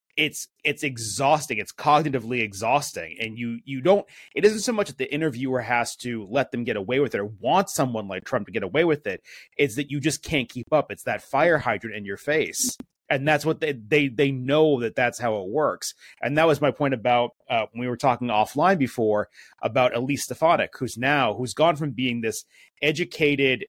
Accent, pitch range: American, 125-160 Hz